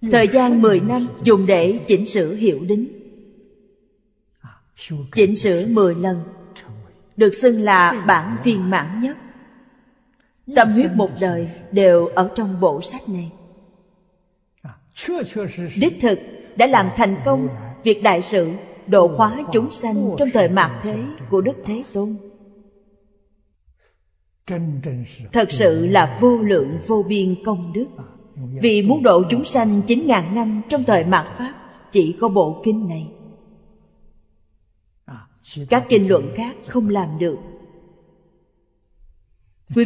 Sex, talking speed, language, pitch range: female, 130 wpm, Vietnamese, 175-225 Hz